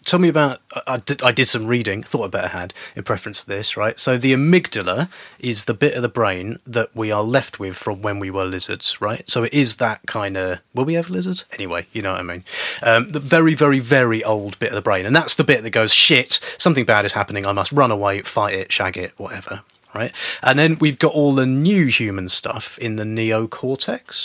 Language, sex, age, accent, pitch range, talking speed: English, male, 30-49, British, 105-135 Hz, 245 wpm